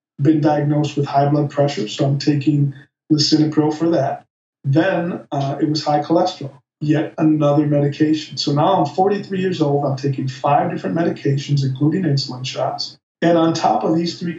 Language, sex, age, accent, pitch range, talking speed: English, male, 50-69, American, 140-160 Hz, 170 wpm